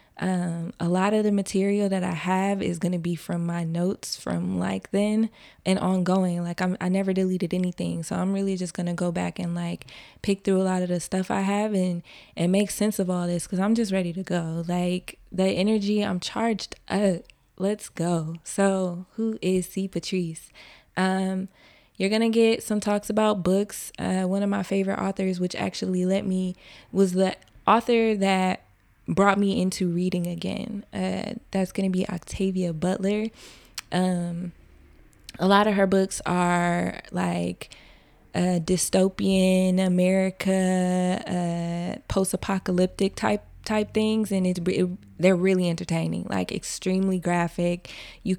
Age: 20-39